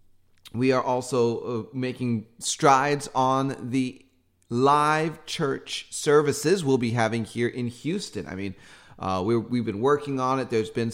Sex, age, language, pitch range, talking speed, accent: male, 30-49, English, 100-125 Hz, 145 wpm, American